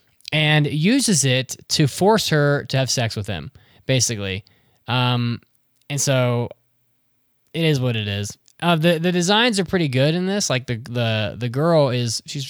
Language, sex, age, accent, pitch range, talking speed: English, male, 10-29, American, 115-155 Hz, 175 wpm